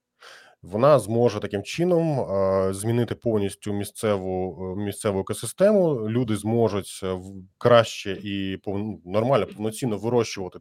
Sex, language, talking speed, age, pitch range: male, Ukrainian, 90 wpm, 20-39, 95-120 Hz